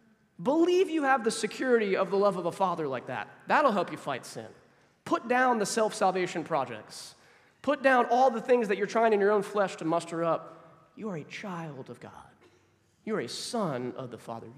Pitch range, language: 140-205 Hz, English